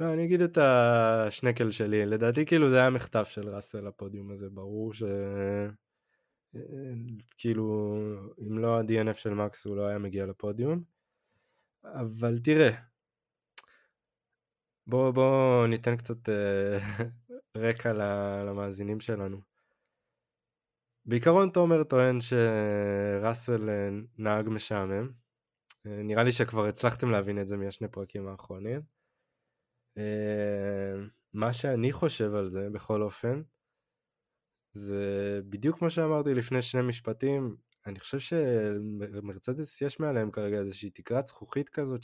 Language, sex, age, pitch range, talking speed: Hebrew, male, 20-39, 100-130 Hz, 110 wpm